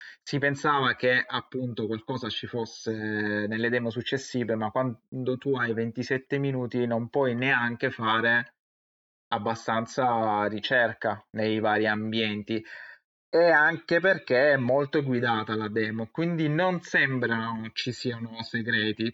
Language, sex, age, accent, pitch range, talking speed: Italian, male, 20-39, native, 110-130 Hz, 120 wpm